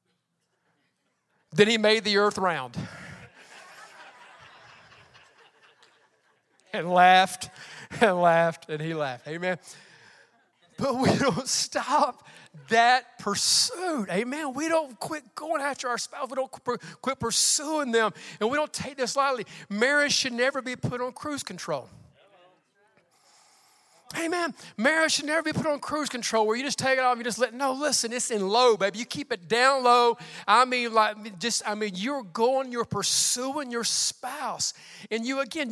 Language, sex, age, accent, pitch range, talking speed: English, male, 40-59, American, 200-265 Hz, 155 wpm